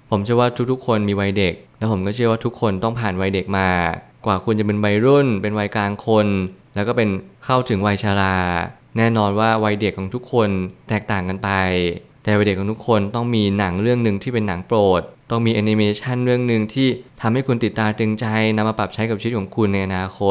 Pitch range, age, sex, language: 100-120 Hz, 20-39, male, Thai